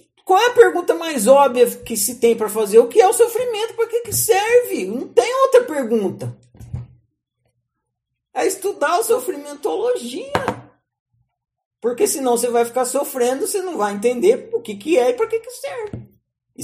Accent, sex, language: Brazilian, male, Portuguese